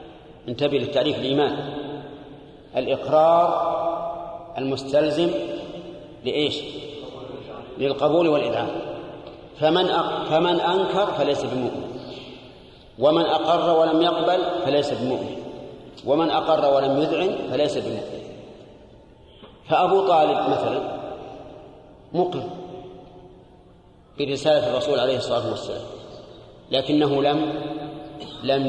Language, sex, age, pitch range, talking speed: Arabic, male, 40-59, 140-165 Hz, 75 wpm